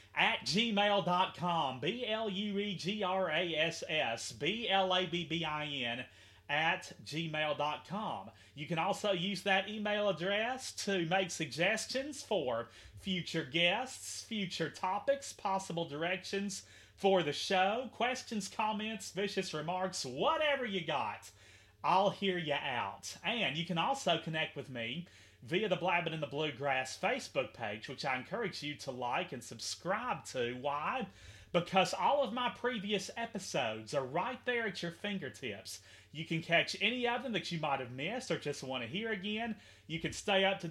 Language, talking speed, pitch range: English, 140 wpm, 145-205 Hz